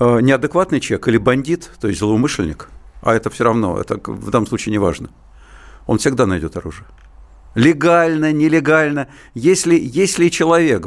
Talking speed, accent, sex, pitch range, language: 145 wpm, native, male, 115-160 Hz, Russian